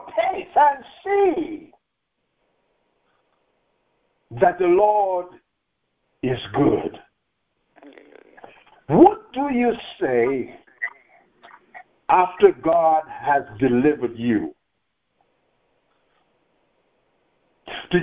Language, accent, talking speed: English, American, 60 wpm